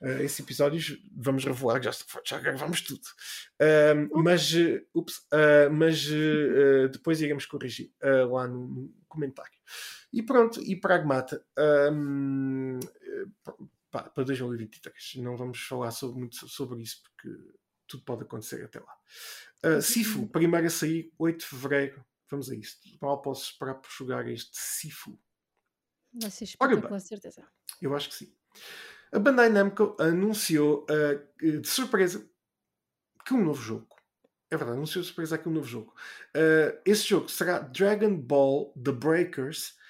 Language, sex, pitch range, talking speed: Portuguese, male, 140-185 Hz, 135 wpm